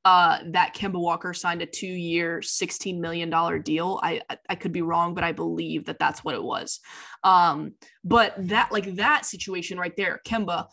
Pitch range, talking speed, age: 175-195 Hz, 190 wpm, 20-39